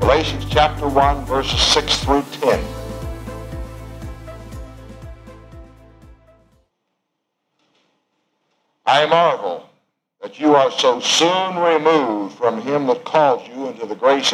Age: 60-79